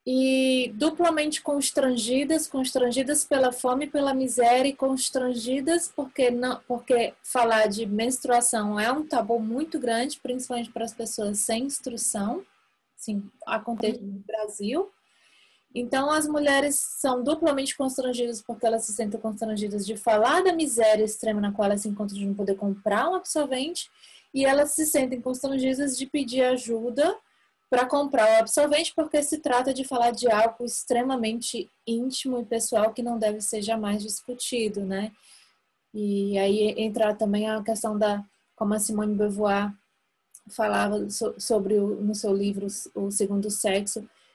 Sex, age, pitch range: female, 20-39, 215-260 Hz